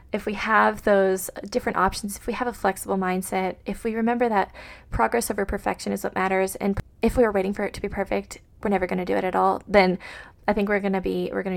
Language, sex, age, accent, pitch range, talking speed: English, female, 20-39, American, 200-245 Hz, 260 wpm